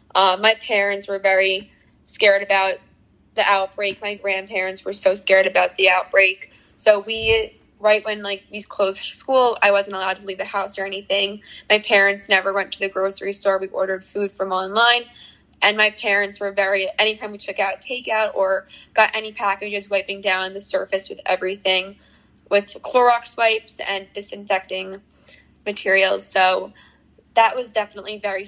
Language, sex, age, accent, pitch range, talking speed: English, female, 10-29, American, 195-215 Hz, 165 wpm